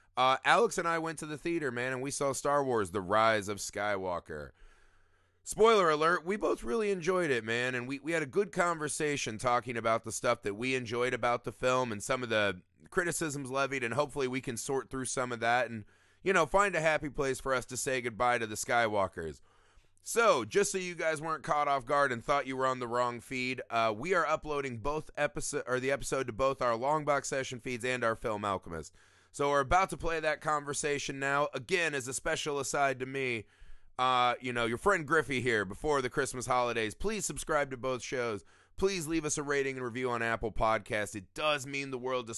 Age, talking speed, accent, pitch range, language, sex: 30-49, 220 wpm, American, 120-150 Hz, English, male